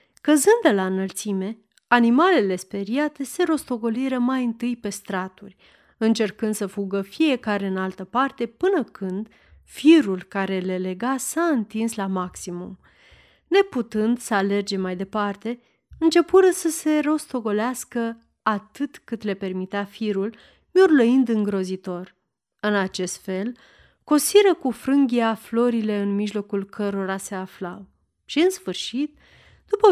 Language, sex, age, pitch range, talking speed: Romanian, female, 30-49, 195-260 Hz, 120 wpm